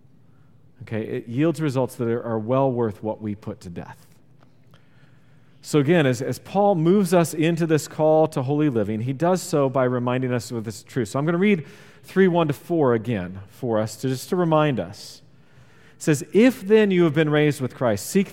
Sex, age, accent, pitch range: male, 40-59, American, 130-170 Hz